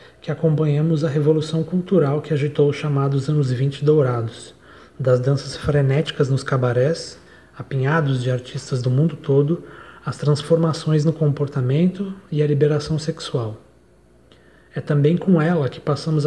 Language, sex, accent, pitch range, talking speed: Portuguese, male, Brazilian, 135-160 Hz, 135 wpm